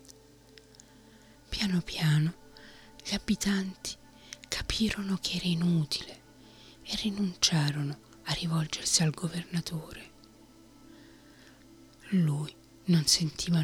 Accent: native